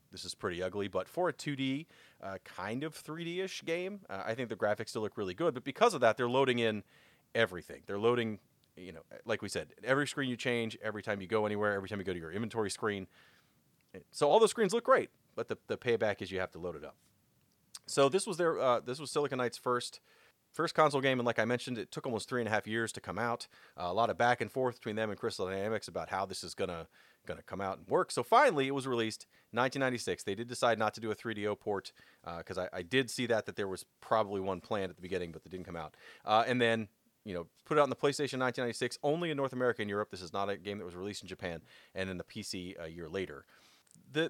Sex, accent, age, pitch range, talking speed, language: male, American, 30-49, 105-140 Hz, 265 wpm, English